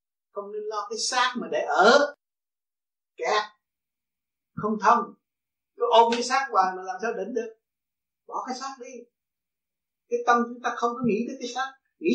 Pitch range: 210-270 Hz